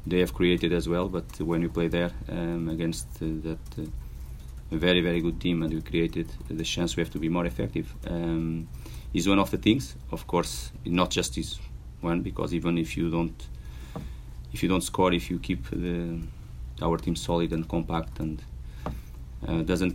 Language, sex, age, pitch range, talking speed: English, male, 30-49, 80-90 Hz, 190 wpm